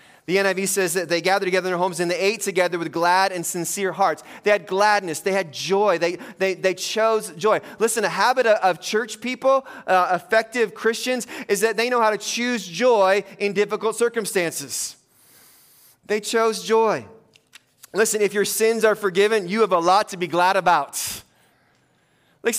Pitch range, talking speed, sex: 180-220 Hz, 180 wpm, male